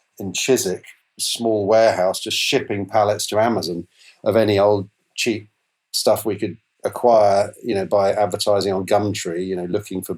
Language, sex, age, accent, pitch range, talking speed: English, male, 40-59, British, 95-110 Hz, 165 wpm